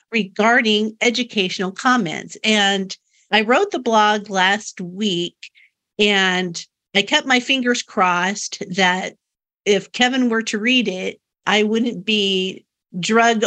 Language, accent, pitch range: English, American, 190-235 Hz